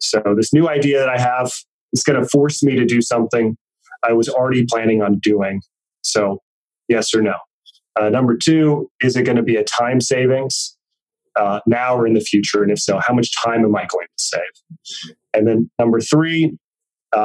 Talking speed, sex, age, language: 200 wpm, male, 20-39, English